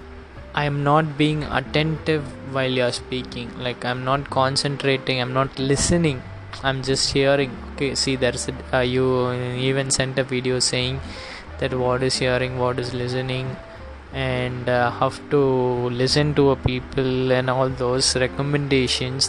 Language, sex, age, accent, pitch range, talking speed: Tamil, male, 20-39, native, 125-145 Hz, 145 wpm